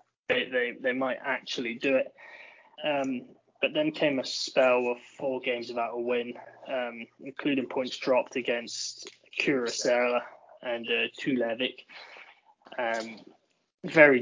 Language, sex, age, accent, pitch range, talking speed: English, male, 20-39, British, 125-165 Hz, 125 wpm